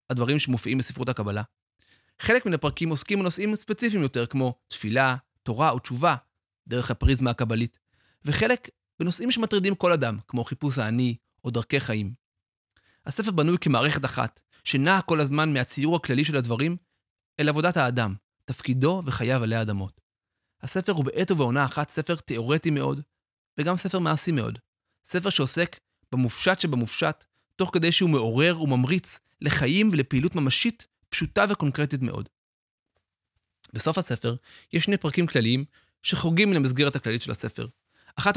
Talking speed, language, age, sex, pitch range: 135 wpm, Hebrew, 30-49, male, 115-165 Hz